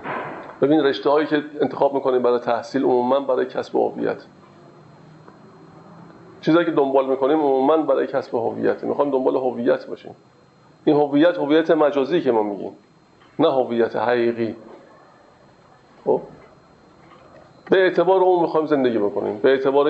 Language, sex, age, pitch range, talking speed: Persian, male, 50-69, 130-165 Hz, 135 wpm